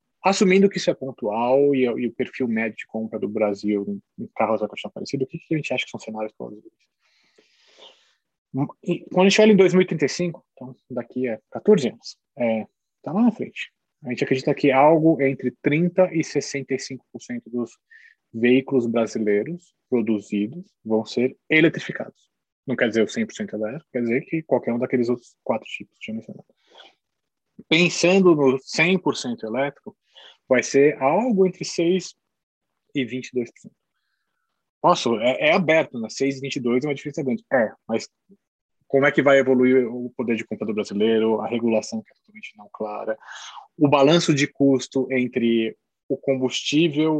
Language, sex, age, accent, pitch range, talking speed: Portuguese, male, 20-39, Brazilian, 115-160 Hz, 160 wpm